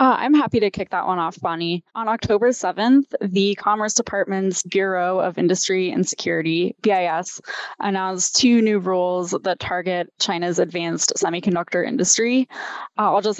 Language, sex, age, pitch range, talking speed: English, female, 10-29, 180-205 Hz, 150 wpm